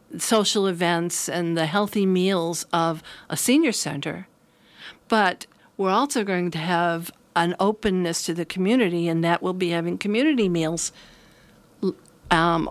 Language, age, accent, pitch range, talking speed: English, 50-69, American, 180-215 Hz, 135 wpm